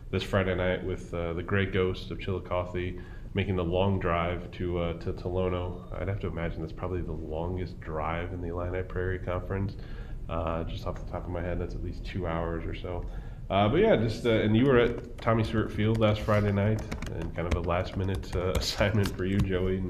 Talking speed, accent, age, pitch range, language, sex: 215 wpm, American, 20-39, 90-95 Hz, English, male